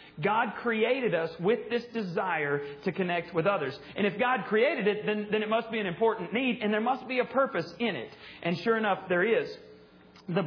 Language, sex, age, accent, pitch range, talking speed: English, male, 40-59, American, 190-235 Hz, 210 wpm